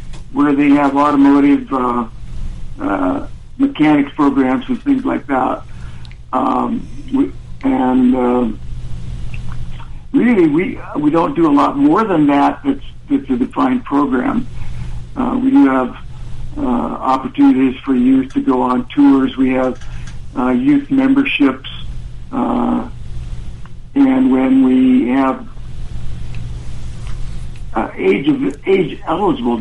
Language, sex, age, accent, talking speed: English, male, 60-79, American, 120 wpm